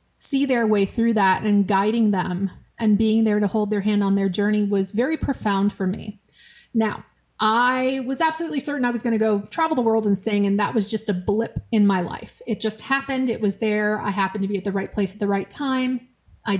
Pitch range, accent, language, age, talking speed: 200-230 Hz, American, English, 30-49, 235 wpm